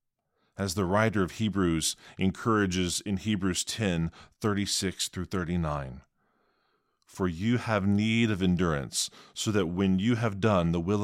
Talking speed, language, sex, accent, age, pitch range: 135 wpm, English, male, American, 40-59, 90-110 Hz